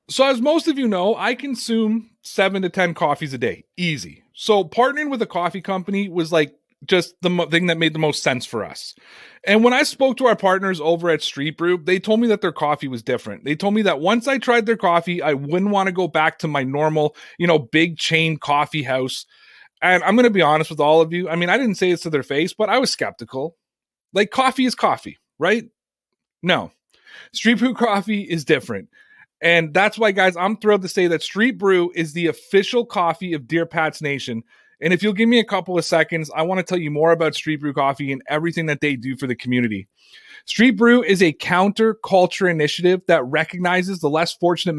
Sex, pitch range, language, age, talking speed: male, 160-205 Hz, English, 30-49, 225 wpm